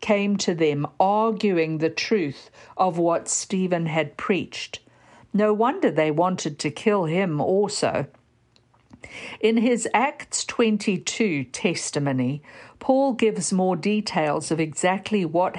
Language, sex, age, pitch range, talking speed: English, female, 50-69, 160-220 Hz, 120 wpm